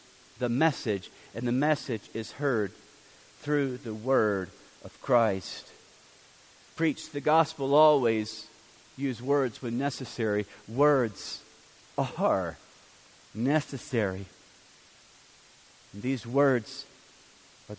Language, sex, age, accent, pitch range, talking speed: English, male, 40-59, American, 125-165 Hz, 90 wpm